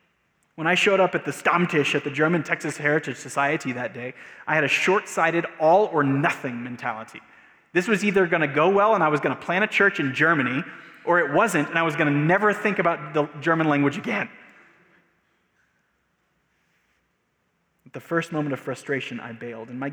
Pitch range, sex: 125-160 Hz, male